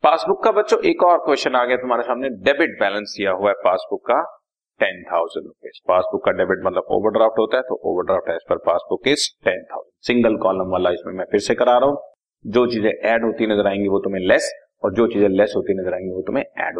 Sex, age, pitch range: male, 30-49, 110-160 Hz